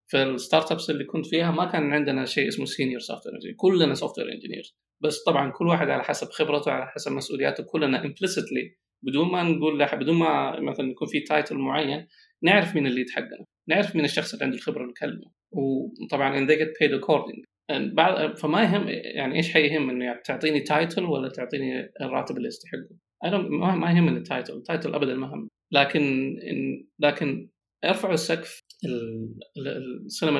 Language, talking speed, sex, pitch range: Arabic, 165 wpm, male, 135-155 Hz